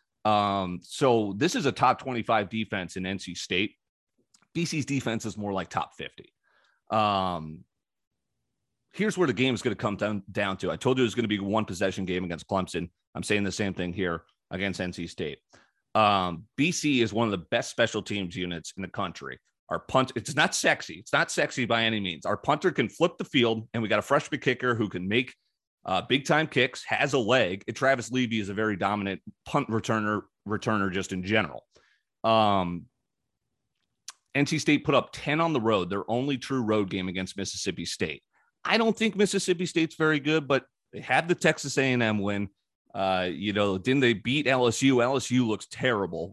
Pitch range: 95-125 Hz